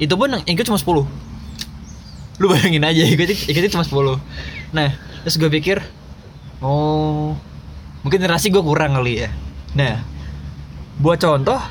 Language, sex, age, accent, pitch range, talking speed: Indonesian, male, 20-39, native, 115-165 Hz, 135 wpm